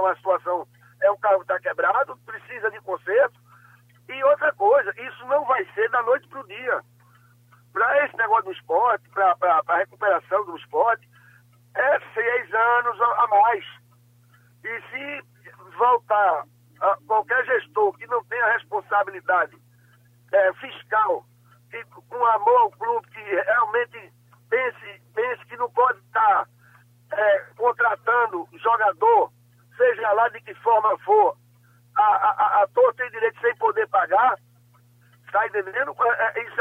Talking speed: 140 wpm